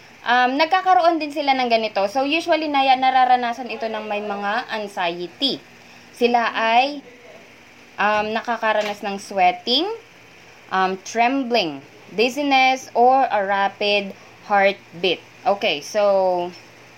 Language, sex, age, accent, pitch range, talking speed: Filipino, female, 20-39, native, 205-275 Hz, 105 wpm